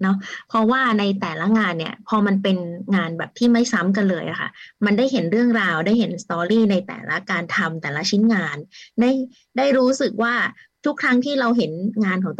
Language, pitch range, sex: Thai, 190-235 Hz, female